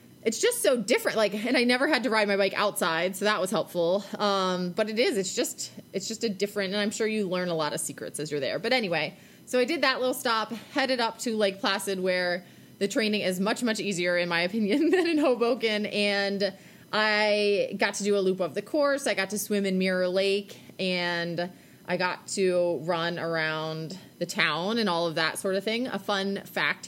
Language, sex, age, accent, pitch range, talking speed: English, female, 20-39, American, 180-230 Hz, 225 wpm